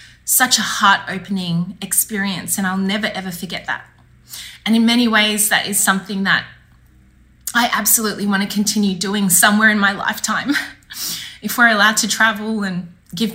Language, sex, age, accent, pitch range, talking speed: English, female, 20-39, Australian, 195-230 Hz, 155 wpm